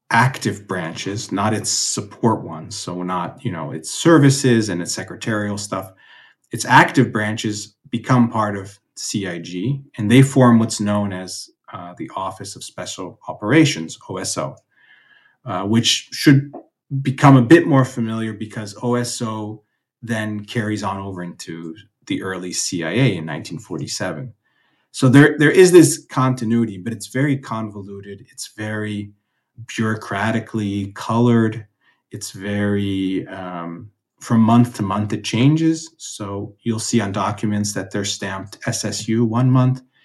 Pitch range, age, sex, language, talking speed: 100-125 Hz, 30-49, male, English, 135 wpm